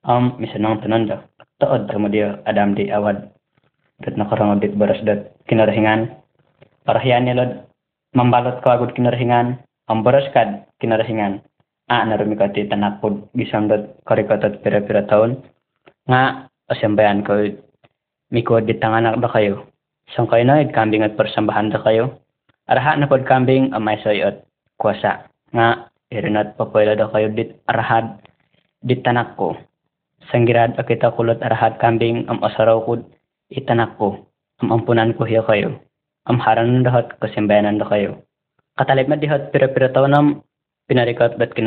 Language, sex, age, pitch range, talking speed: Malay, male, 20-39, 110-125 Hz, 130 wpm